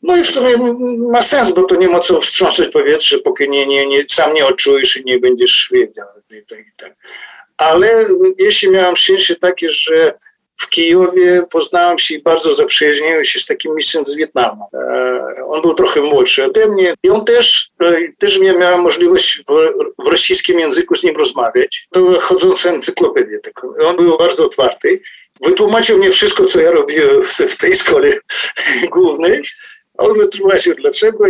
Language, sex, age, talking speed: Polish, male, 50-69, 175 wpm